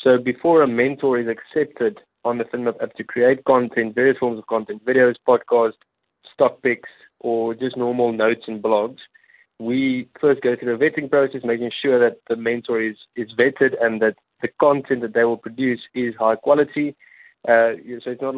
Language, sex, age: English, male, 20-39